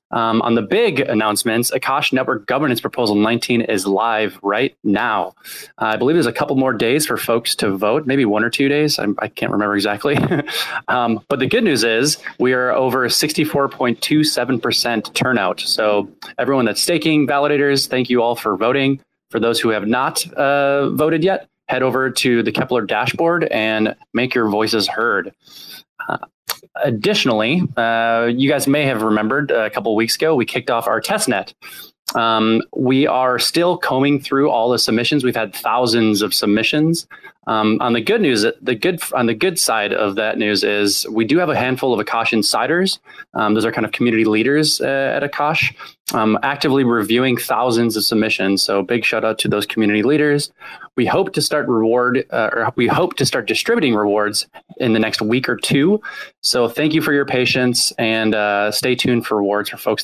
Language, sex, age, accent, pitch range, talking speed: English, male, 20-39, American, 110-140 Hz, 190 wpm